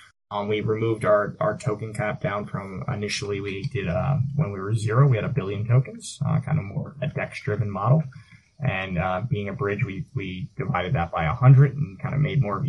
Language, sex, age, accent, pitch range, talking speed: English, male, 20-39, American, 105-145 Hz, 220 wpm